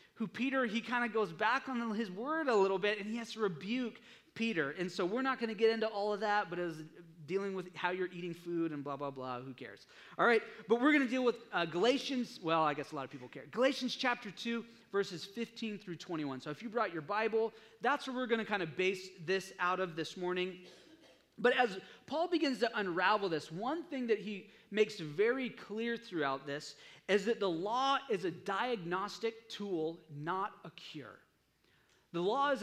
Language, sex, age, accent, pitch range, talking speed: English, male, 30-49, American, 165-230 Hz, 215 wpm